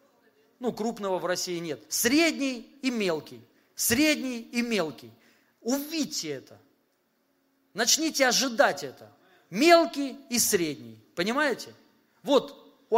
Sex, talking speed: male, 100 wpm